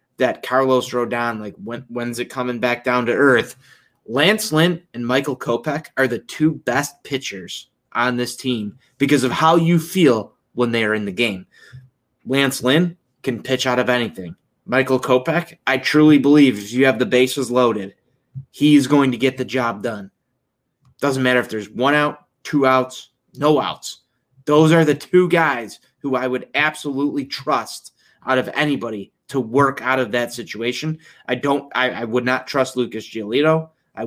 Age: 20-39